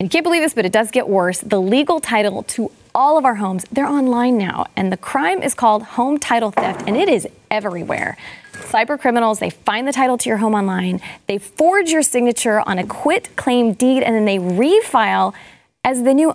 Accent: American